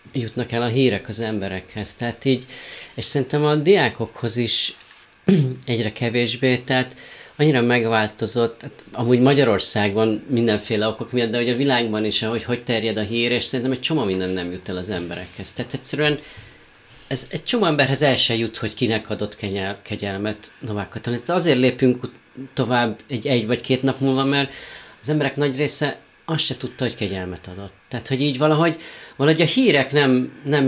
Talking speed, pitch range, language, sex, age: 170 wpm, 115-135 Hz, Hungarian, male, 30-49